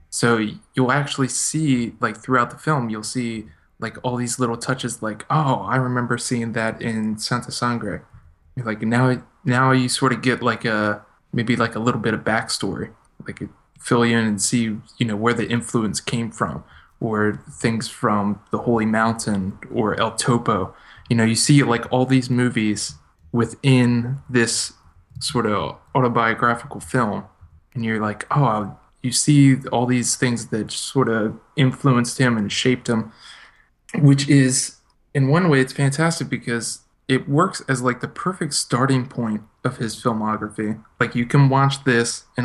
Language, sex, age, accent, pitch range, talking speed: English, male, 20-39, American, 110-130 Hz, 170 wpm